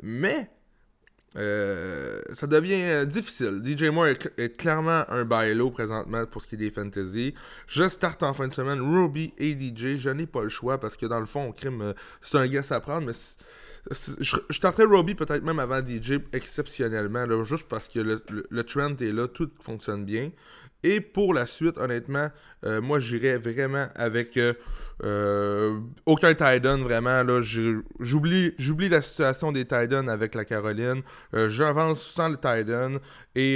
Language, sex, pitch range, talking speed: French, male, 115-155 Hz, 175 wpm